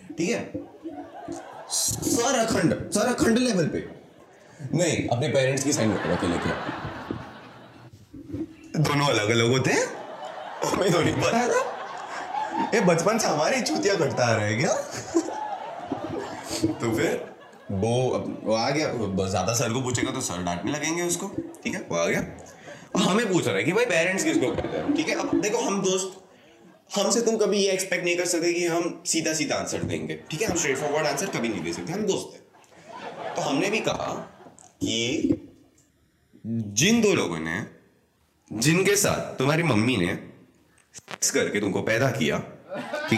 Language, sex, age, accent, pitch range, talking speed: Hindi, male, 30-49, native, 130-210 Hz, 120 wpm